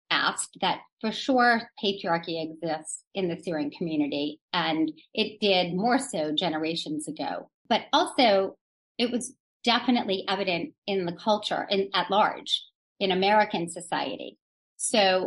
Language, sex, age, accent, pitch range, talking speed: English, female, 40-59, American, 170-225 Hz, 130 wpm